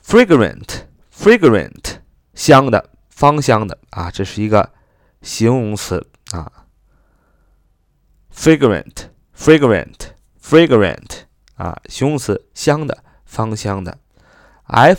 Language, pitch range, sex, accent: Chinese, 95-130 Hz, male, native